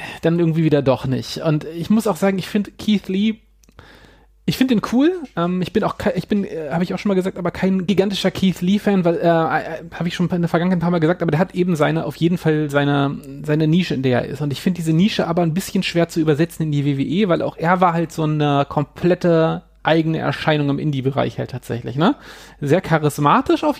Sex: male